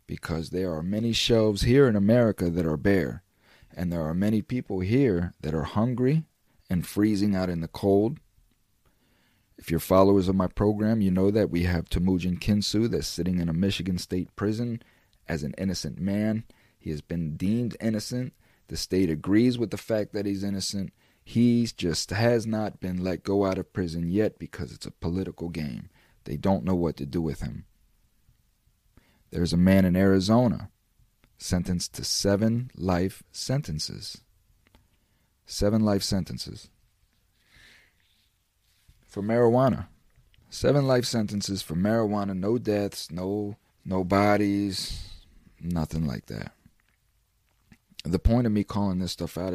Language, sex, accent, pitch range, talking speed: English, male, American, 85-105 Hz, 150 wpm